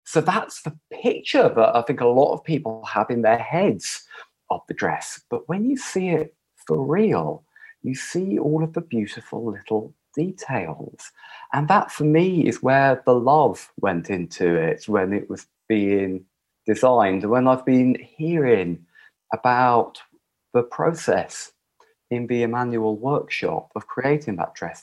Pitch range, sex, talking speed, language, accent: 120-160 Hz, male, 155 wpm, English, British